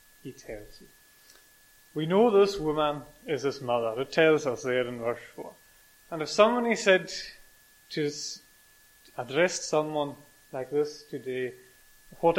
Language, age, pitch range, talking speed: English, 30-49, 135-175 Hz, 140 wpm